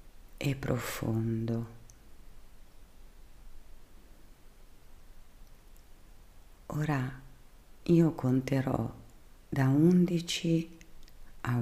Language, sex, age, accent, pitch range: Italian, female, 50-69, native, 105-145 Hz